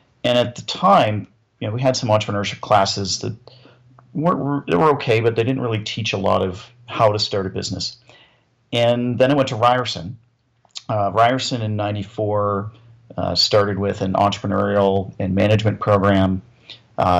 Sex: male